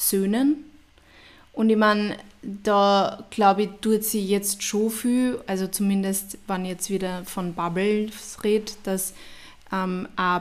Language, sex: German, female